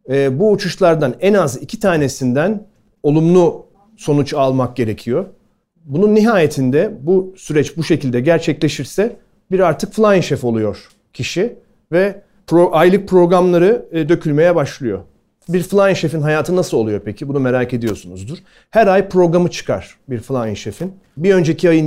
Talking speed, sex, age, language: 135 wpm, male, 40-59, Turkish